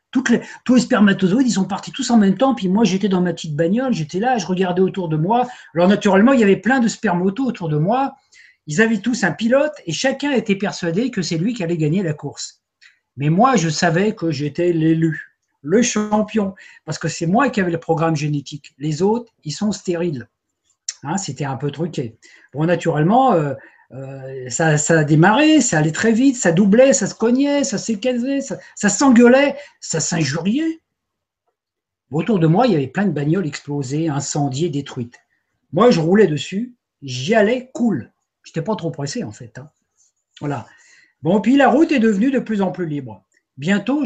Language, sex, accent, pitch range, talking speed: French, male, French, 155-230 Hz, 195 wpm